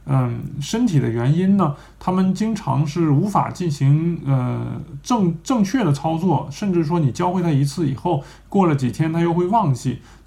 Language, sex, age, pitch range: Chinese, male, 20-39, 135-180 Hz